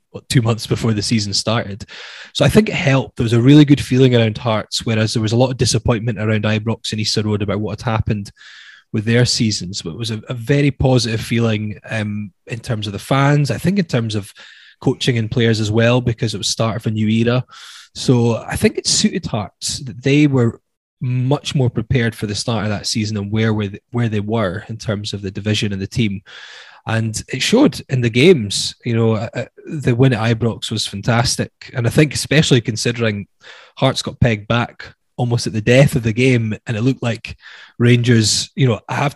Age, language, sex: 20-39, English, male